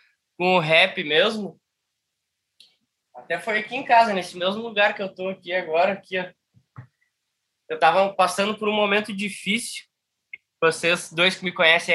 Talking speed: 150 wpm